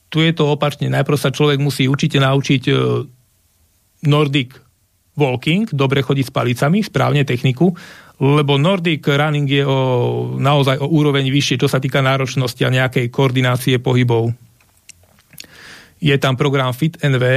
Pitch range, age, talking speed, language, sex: 120-145 Hz, 40-59, 135 wpm, Slovak, male